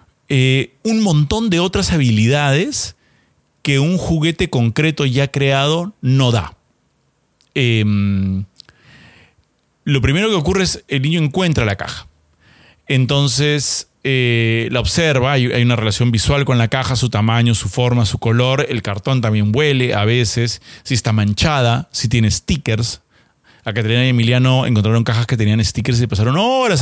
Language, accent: Spanish, Argentinian